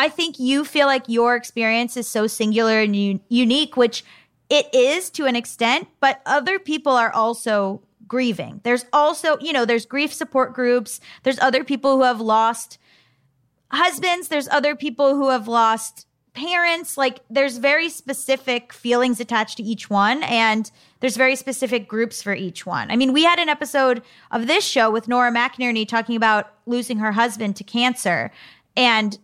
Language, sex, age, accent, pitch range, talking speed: English, female, 20-39, American, 215-275 Hz, 170 wpm